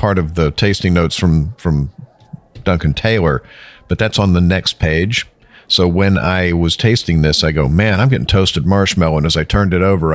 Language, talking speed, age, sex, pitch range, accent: English, 200 wpm, 50-69, male, 80-100 Hz, American